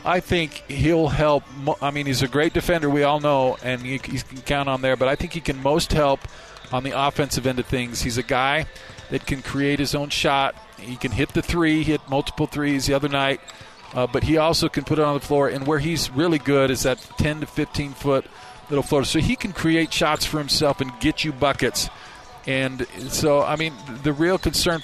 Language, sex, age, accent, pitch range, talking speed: English, male, 40-59, American, 125-145 Hz, 225 wpm